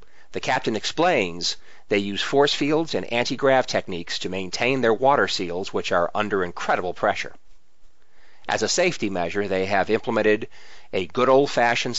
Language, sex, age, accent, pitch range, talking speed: English, male, 40-59, American, 100-125 Hz, 150 wpm